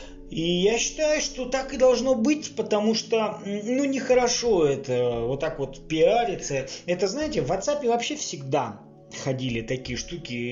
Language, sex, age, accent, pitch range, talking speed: Russian, male, 20-39, native, 130-170 Hz, 150 wpm